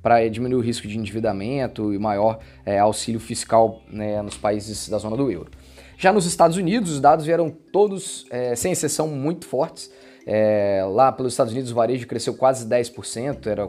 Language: Portuguese